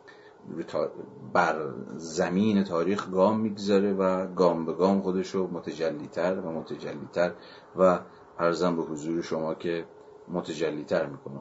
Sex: male